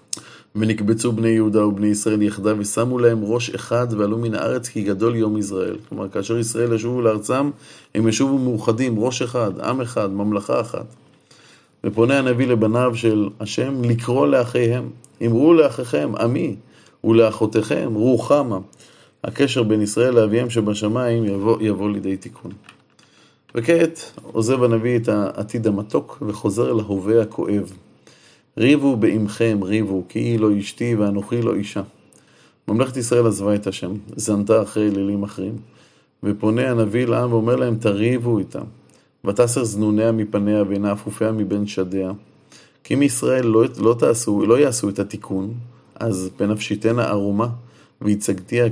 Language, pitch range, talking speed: Hebrew, 105-120 Hz, 130 wpm